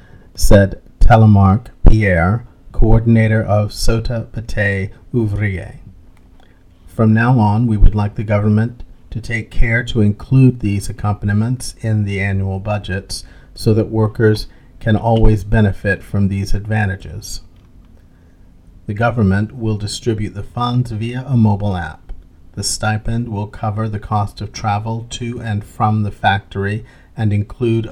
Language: English